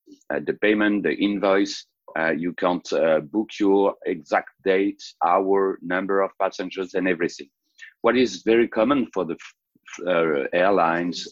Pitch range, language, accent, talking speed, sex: 85-110 Hz, English, French, 145 wpm, male